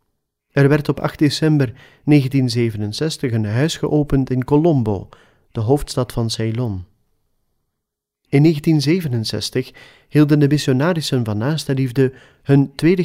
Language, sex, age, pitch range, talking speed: Dutch, male, 40-59, 115-145 Hz, 110 wpm